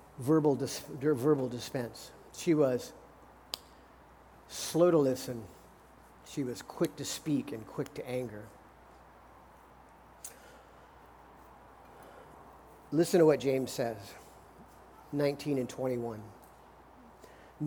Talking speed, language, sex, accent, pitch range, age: 85 wpm, English, male, American, 145-195 Hz, 50-69